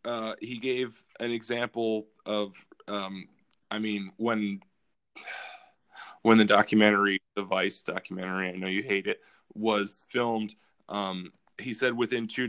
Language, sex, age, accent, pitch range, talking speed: English, male, 20-39, American, 100-115 Hz, 135 wpm